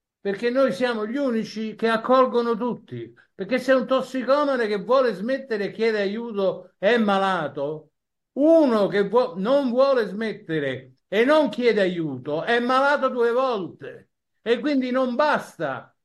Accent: native